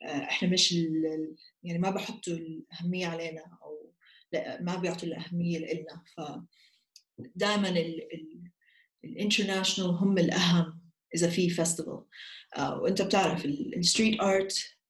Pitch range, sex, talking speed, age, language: 165-195 Hz, female, 100 wpm, 30-49, Arabic